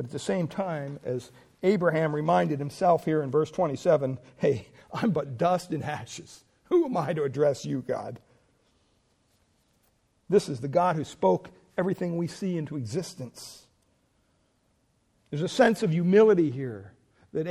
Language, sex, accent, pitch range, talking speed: English, male, American, 145-225 Hz, 150 wpm